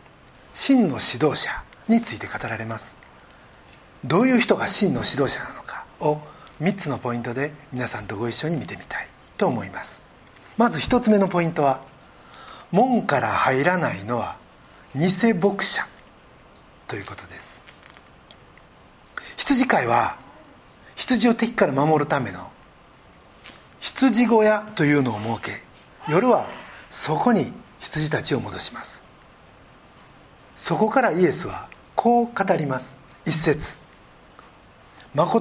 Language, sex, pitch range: Japanese, male, 140-230 Hz